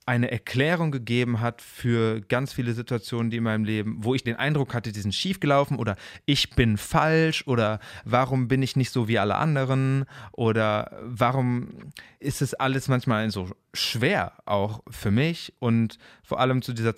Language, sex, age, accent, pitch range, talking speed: German, male, 30-49, German, 110-135 Hz, 175 wpm